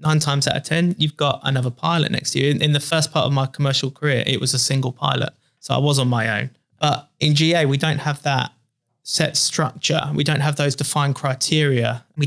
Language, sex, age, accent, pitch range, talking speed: English, male, 20-39, British, 130-150 Hz, 230 wpm